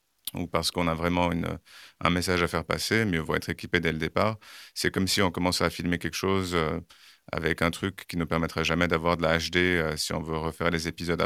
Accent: French